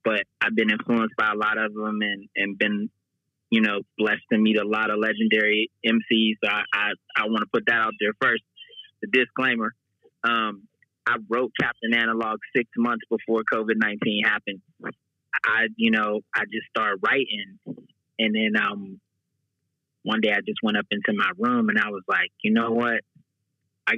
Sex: male